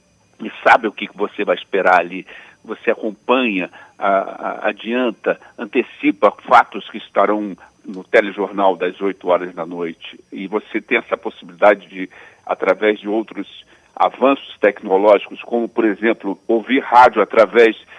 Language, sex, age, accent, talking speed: Portuguese, male, 60-79, Brazilian, 135 wpm